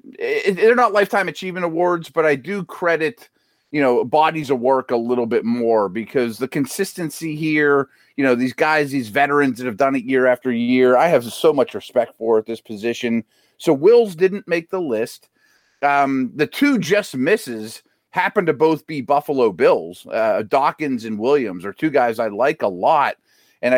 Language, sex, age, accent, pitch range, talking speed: English, male, 30-49, American, 125-155 Hz, 190 wpm